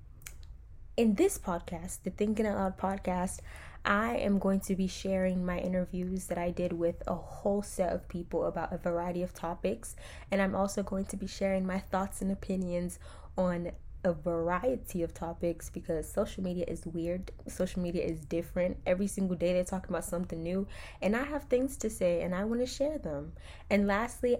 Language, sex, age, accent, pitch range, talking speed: English, female, 10-29, American, 175-195 Hz, 190 wpm